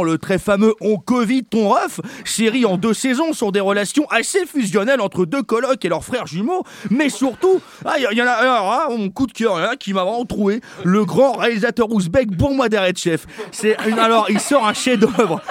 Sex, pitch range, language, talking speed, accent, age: male, 205-265 Hz, French, 230 wpm, French, 30-49